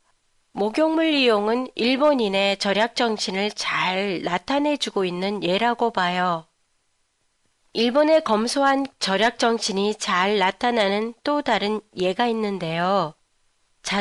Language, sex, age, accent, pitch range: Japanese, female, 30-49, Korean, 190-260 Hz